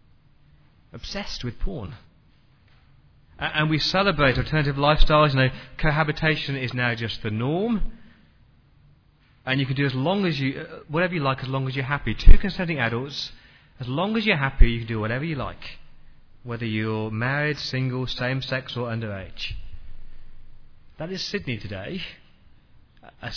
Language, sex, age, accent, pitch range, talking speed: English, male, 30-49, British, 115-155 Hz, 150 wpm